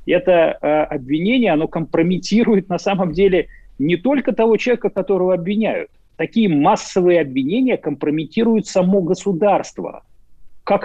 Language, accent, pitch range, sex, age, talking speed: Russian, native, 155-210 Hz, male, 40-59, 110 wpm